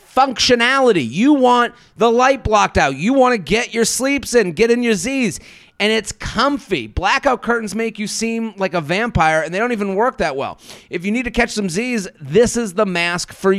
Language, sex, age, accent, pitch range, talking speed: English, male, 30-49, American, 150-215 Hz, 210 wpm